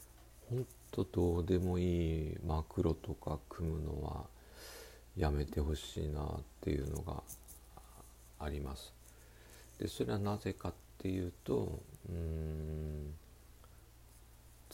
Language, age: Japanese, 50-69